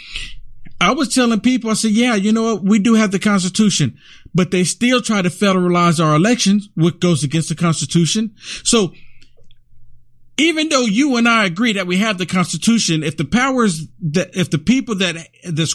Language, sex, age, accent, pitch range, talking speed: English, male, 50-69, American, 130-215 Hz, 185 wpm